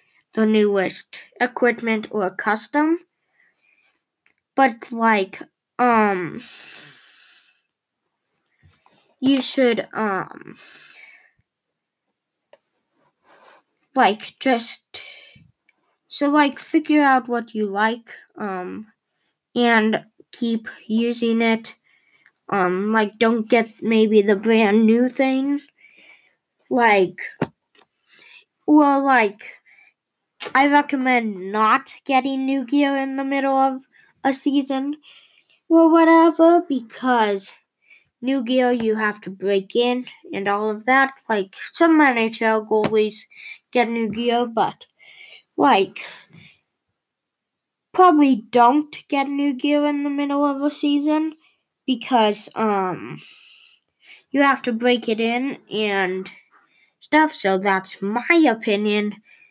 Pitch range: 215-275 Hz